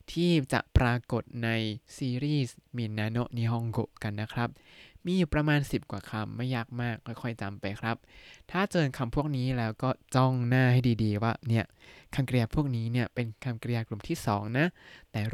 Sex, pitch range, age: male, 110-140 Hz, 20-39